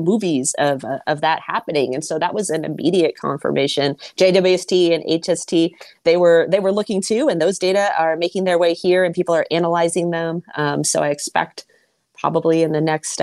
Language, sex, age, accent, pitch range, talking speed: English, female, 30-49, American, 155-180 Hz, 195 wpm